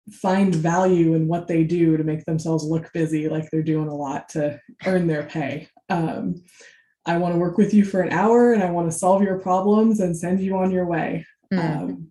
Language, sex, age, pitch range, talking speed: English, female, 20-39, 165-190 Hz, 220 wpm